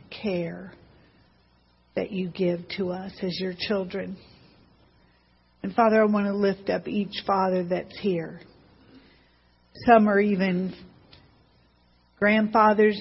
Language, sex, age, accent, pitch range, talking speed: English, female, 50-69, American, 170-205 Hz, 110 wpm